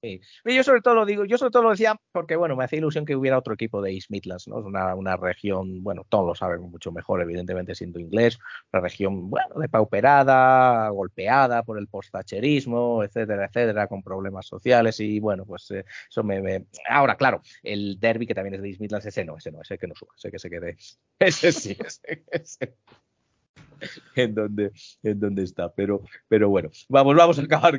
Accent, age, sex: Spanish, 30-49, male